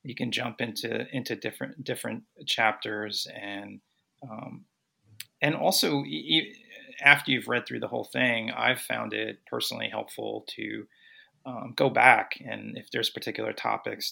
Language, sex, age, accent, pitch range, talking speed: English, male, 30-49, American, 110-135 Hz, 140 wpm